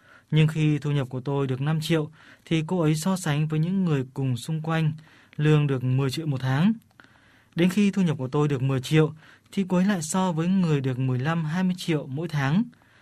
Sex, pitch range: male, 130-165 Hz